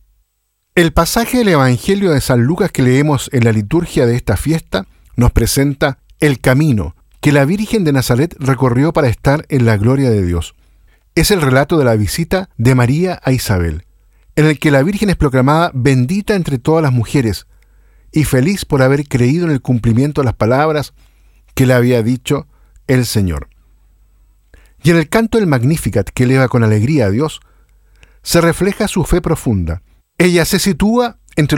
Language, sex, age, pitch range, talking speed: Spanish, male, 50-69, 110-160 Hz, 175 wpm